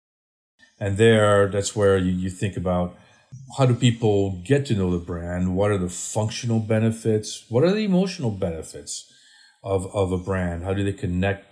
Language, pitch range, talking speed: English, 90-110 Hz, 175 wpm